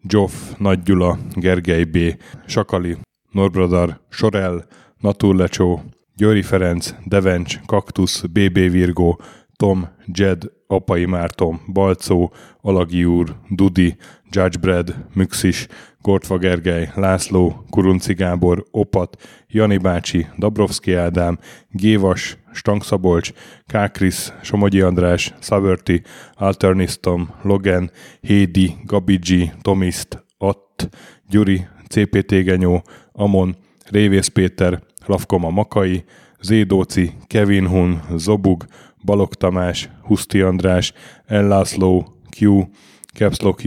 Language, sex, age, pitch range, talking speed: Hungarian, male, 20-39, 90-100 Hz, 90 wpm